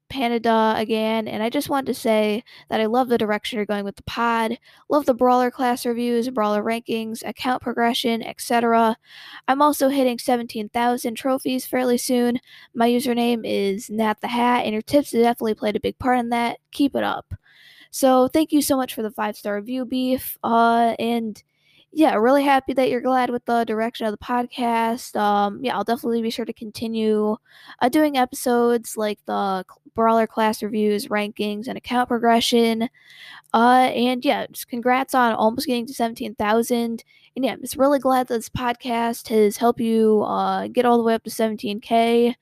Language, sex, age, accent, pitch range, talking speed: English, female, 10-29, American, 220-255 Hz, 180 wpm